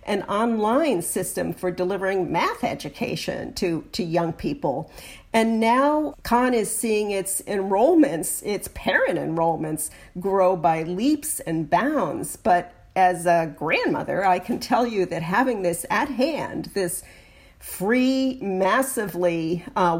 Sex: female